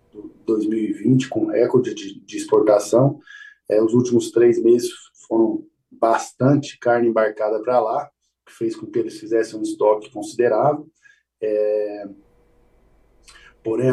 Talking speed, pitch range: 120 wpm, 115-175 Hz